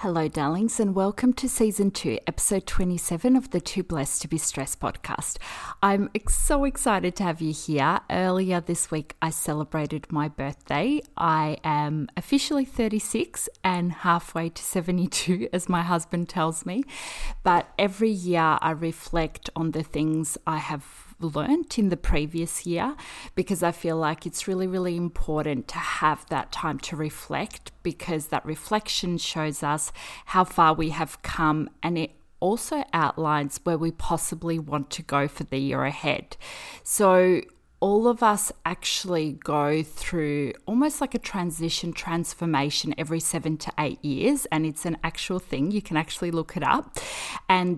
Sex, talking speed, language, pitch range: female, 160 wpm, English, 155-190 Hz